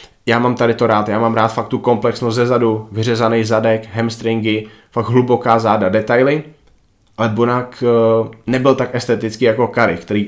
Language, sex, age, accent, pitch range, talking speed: Czech, male, 20-39, native, 105-120 Hz, 160 wpm